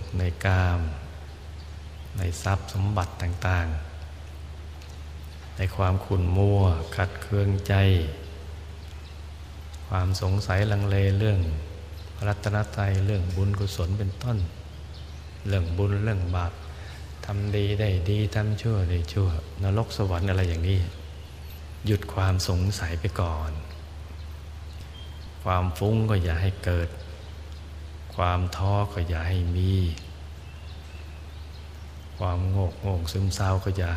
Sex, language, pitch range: male, Thai, 80-95 Hz